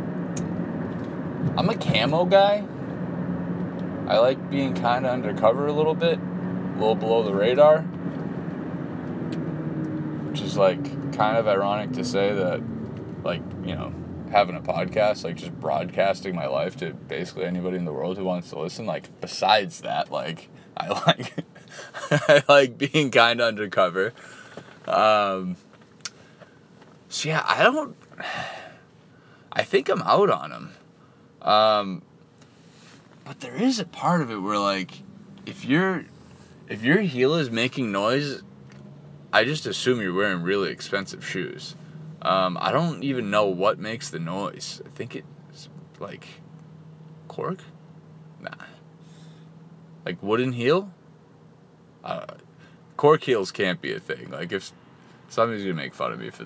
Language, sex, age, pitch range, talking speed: English, male, 20-39, 100-160 Hz, 140 wpm